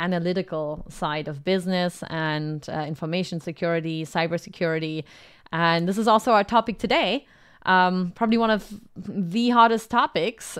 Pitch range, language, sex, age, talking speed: 170-210 Hz, English, female, 20-39, 130 wpm